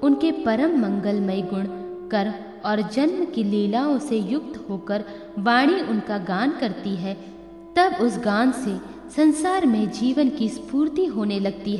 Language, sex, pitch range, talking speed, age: Hindi, female, 195-260 Hz, 140 wpm, 20-39